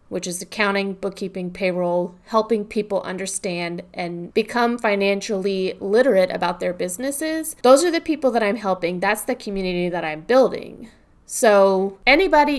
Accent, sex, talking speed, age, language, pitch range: American, female, 145 wpm, 20-39, English, 185-235 Hz